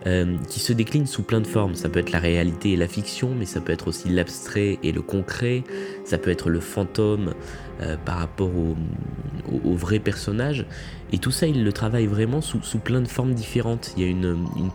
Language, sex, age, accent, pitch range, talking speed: French, male, 20-39, French, 90-115 Hz, 230 wpm